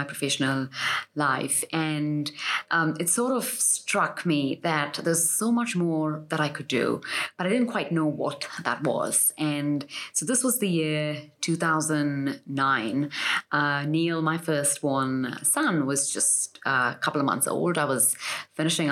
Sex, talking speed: female, 160 wpm